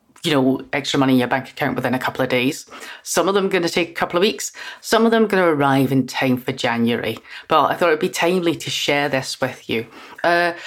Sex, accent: female, British